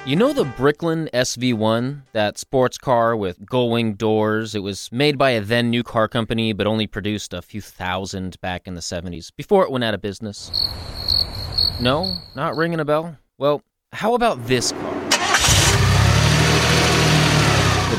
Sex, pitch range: male, 100-145 Hz